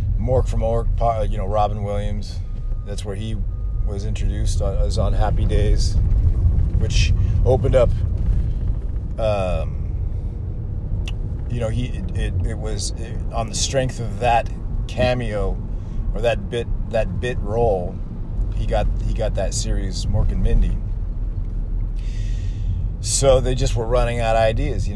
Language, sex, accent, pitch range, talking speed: English, male, American, 95-115 Hz, 135 wpm